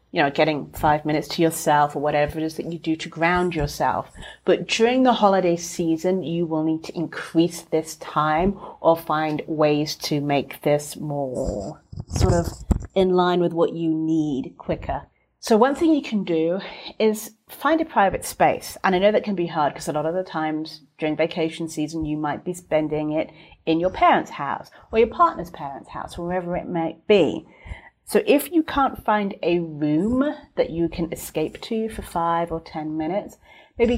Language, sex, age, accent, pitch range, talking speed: English, female, 30-49, British, 155-220 Hz, 190 wpm